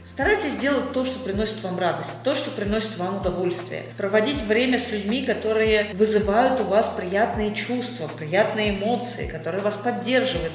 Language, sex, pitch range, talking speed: Russian, female, 180-235 Hz, 155 wpm